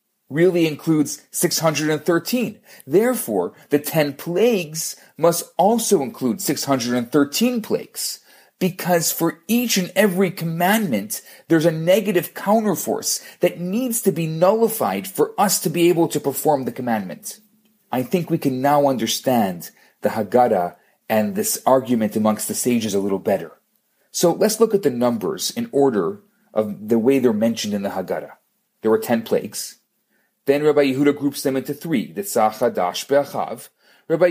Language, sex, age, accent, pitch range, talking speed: English, male, 40-59, Canadian, 135-195 Hz, 150 wpm